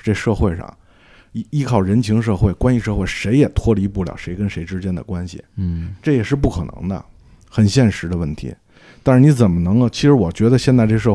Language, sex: Chinese, male